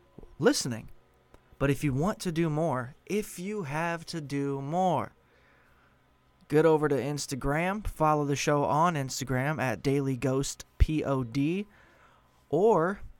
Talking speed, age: 125 wpm, 20-39